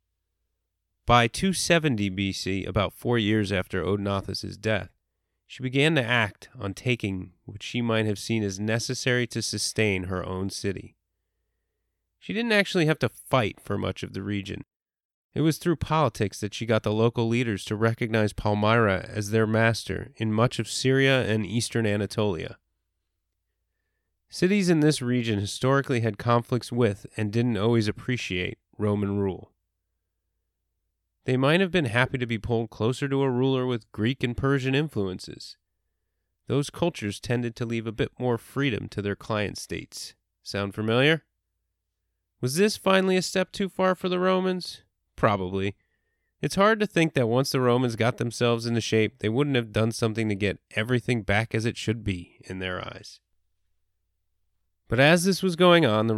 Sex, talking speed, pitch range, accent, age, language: male, 165 wpm, 95-130 Hz, American, 30-49, English